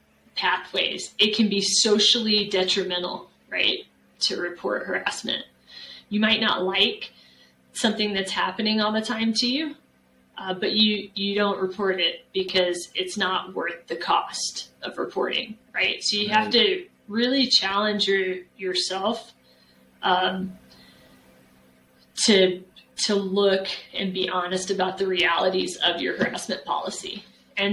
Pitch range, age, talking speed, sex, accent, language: 185-210 Hz, 30-49, 130 wpm, female, American, English